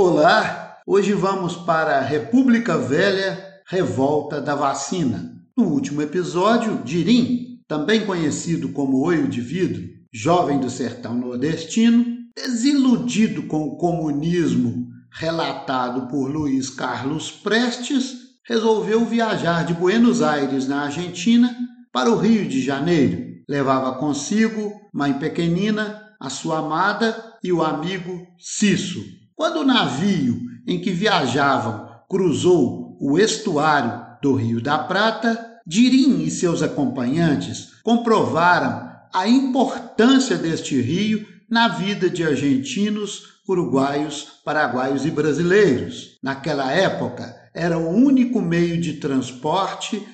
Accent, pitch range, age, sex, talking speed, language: Brazilian, 150-225 Hz, 50-69, male, 110 wpm, Portuguese